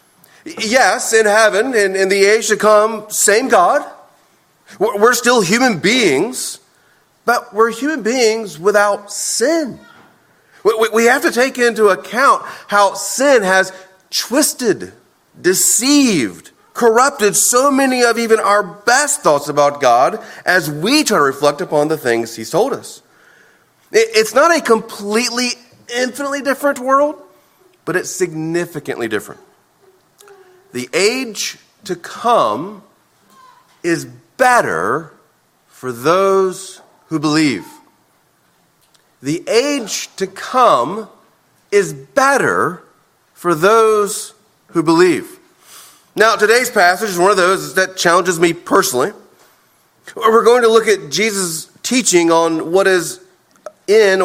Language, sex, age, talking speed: English, male, 30-49, 120 wpm